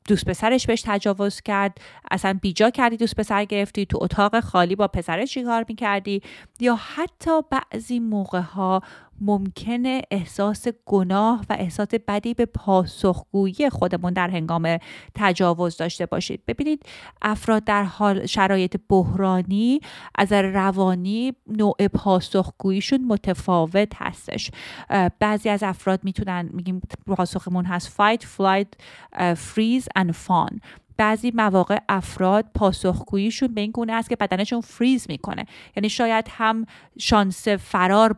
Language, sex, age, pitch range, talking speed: Persian, female, 30-49, 190-225 Hz, 125 wpm